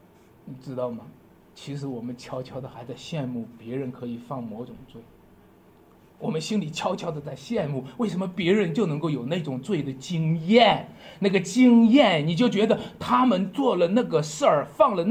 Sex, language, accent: male, Chinese, native